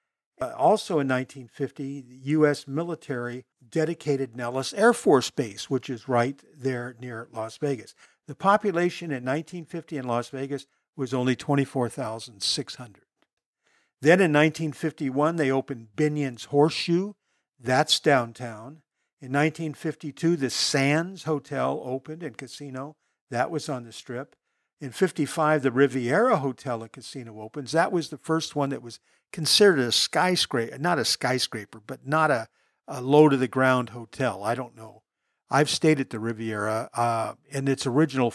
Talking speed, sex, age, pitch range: 140 wpm, male, 50-69, 125-155 Hz